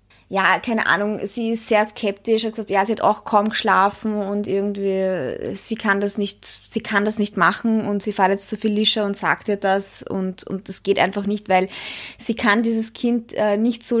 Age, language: 20-39, German